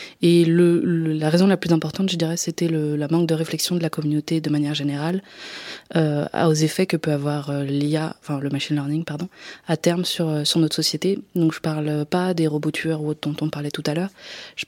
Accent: French